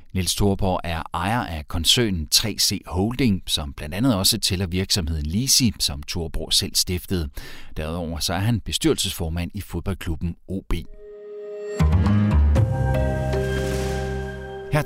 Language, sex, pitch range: Danish, male, 85-115 Hz